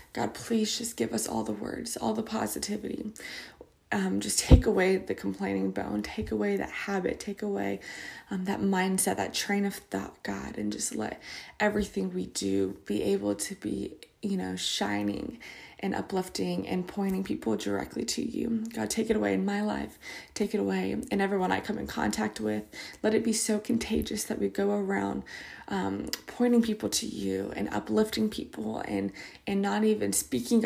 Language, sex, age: English, female, 20-39